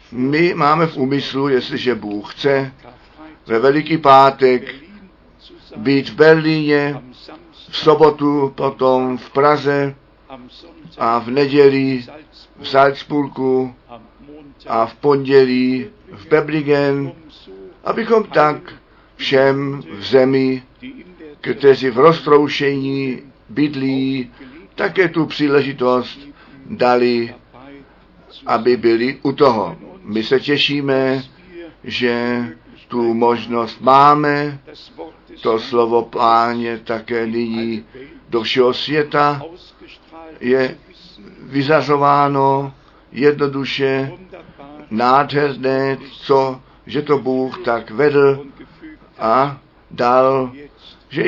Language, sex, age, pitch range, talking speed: Czech, male, 50-69, 125-145 Hz, 85 wpm